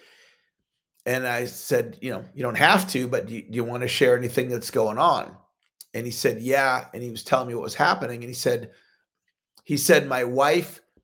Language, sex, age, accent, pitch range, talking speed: English, male, 40-59, American, 135-185 Hz, 210 wpm